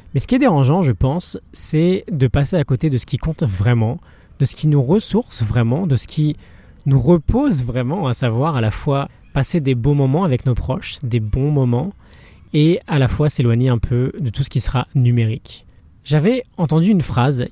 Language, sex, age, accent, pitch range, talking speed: French, male, 20-39, French, 120-155 Hz, 210 wpm